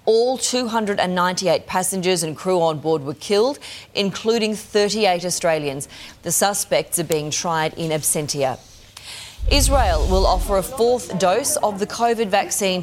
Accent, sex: Australian, female